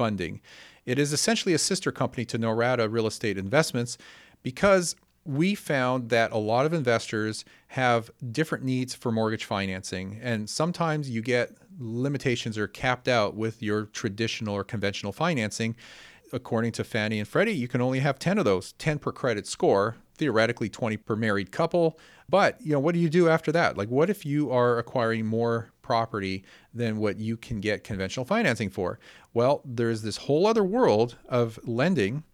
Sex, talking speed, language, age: male, 175 wpm, English, 40-59